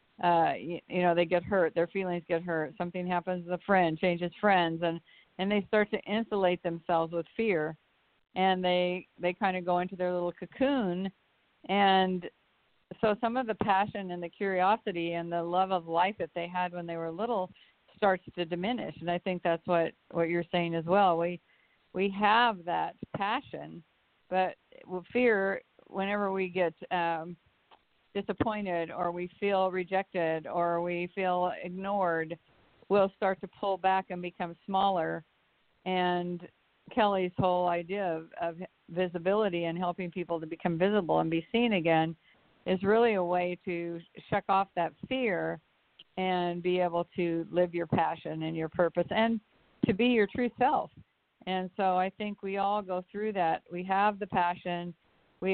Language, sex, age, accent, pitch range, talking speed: English, female, 50-69, American, 175-195 Hz, 170 wpm